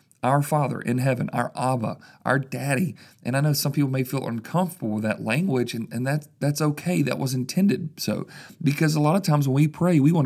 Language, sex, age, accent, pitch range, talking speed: English, male, 40-59, American, 110-145 Hz, 220 wpm